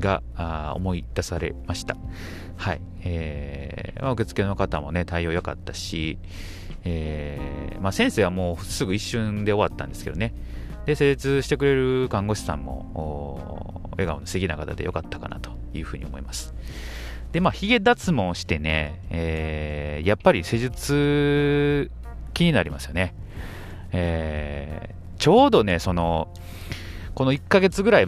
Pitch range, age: 75-100 Hz, 30-49